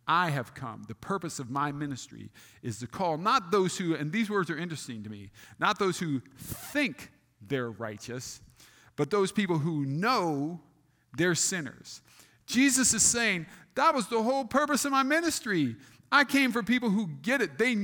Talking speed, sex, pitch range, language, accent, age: 180 wpm, male, 125-190 Hz, English, American, 50-69